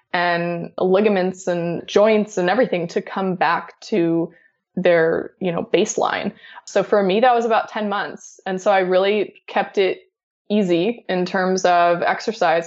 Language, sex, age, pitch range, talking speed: English, female, 20-39, 170-200 Hz, 155 wpm